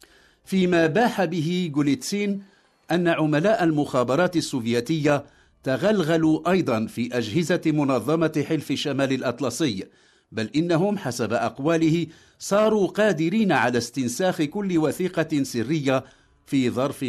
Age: 50-69